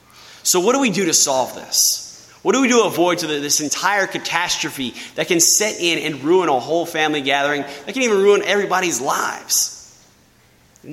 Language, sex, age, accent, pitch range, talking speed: English, male, 30-49, American, 165-230 Hz, 185 wpm